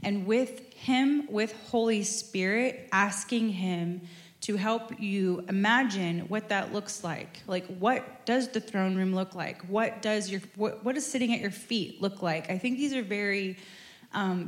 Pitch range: 180-220 Hz